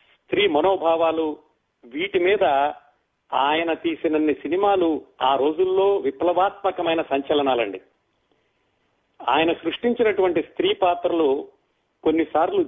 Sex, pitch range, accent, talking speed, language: male, 155-200 Hz, native, 75 wpm, Telugu